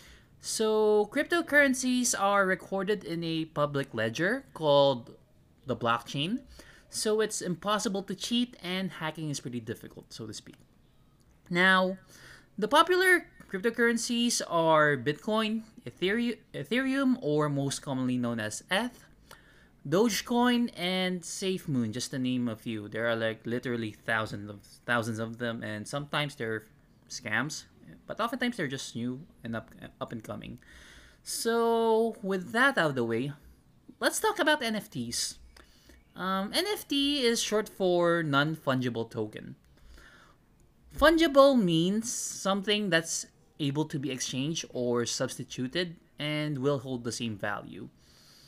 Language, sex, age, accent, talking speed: Filipino, male, 20-39, native, 125 wpm